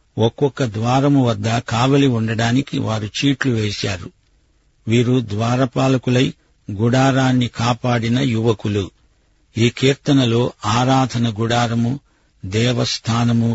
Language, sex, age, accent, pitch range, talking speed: Telugu, male, 50-69, native, 115-135 Hz, 80 wpm